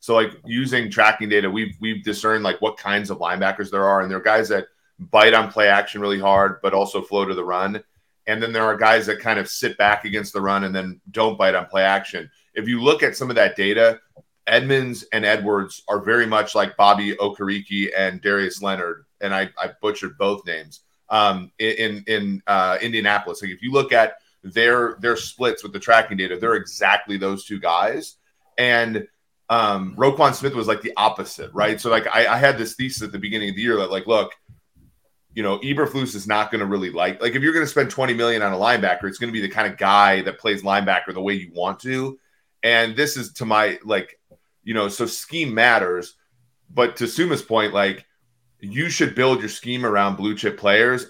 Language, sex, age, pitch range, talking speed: English, male, 30-49, 100-115 Hz, 220 wpm